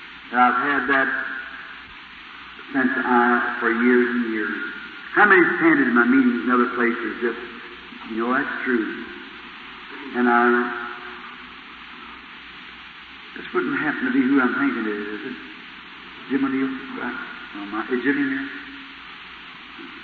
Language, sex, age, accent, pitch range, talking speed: English, male, 50-69, American, 115-135 Hz, 125 wpm